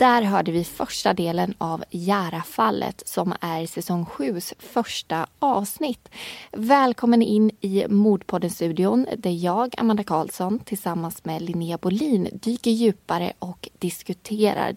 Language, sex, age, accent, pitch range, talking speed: Swedish, female, 20-39, native, 180-240 Hz, 120 wpm